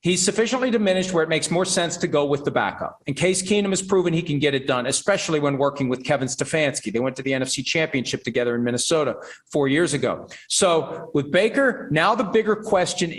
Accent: American